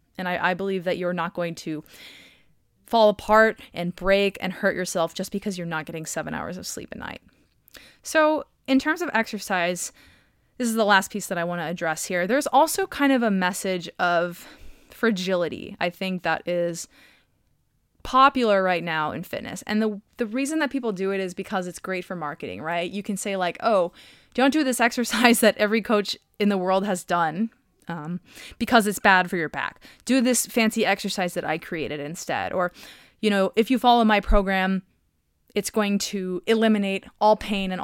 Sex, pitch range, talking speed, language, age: female, 175-225 Hz, 195 wpm, English, 20-39